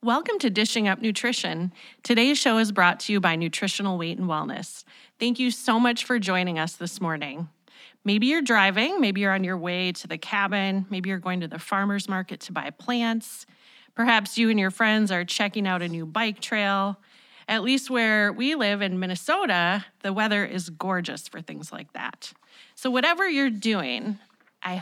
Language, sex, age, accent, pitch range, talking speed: English, female, 30-49, American, 185-235 Hz, 190 wpm